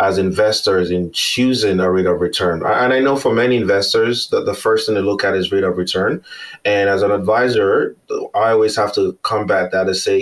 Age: 20-39